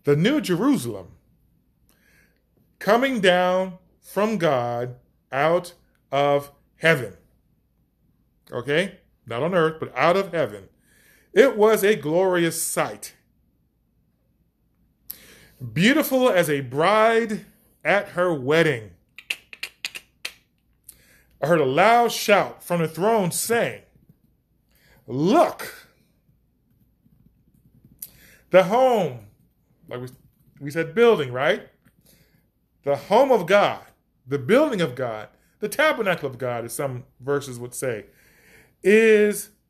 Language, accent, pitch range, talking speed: English, American, 135-200 Hz, 100 wpm